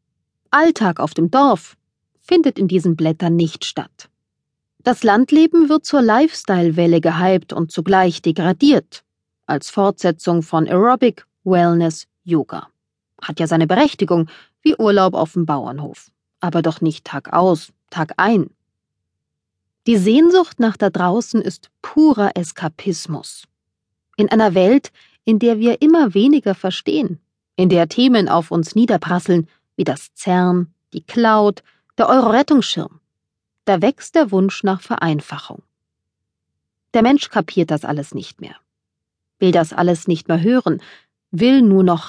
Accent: German